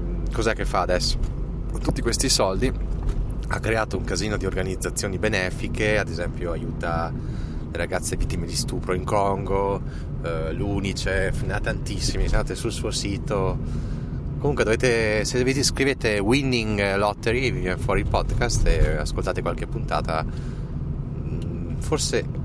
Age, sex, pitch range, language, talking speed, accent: 30-49, male, 95-125 Hz, Italian, 135 wpm, native